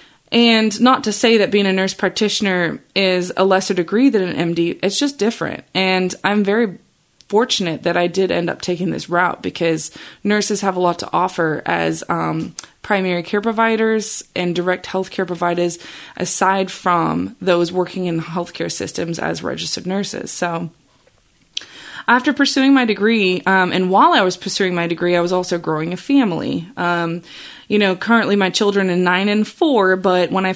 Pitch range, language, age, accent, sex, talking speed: 175-210 Hz, English, 20-39, American, female, 180 wpm